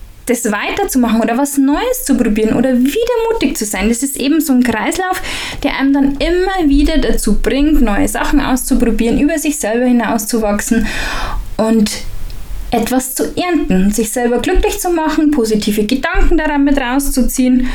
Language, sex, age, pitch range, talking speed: German, female, 10-29, 210-280 Hz, 155 wpm